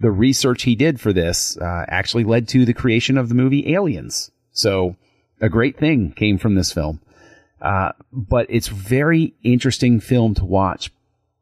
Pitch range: 90-115 Hz